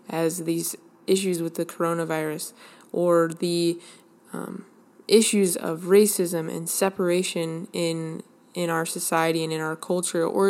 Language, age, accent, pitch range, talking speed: English, 20-39, American, 165-195 Hz, 130 wpm